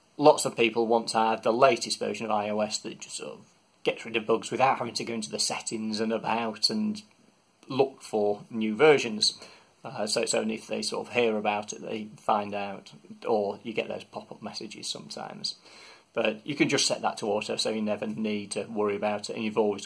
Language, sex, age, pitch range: English, male, 30-49, 110-135 Hz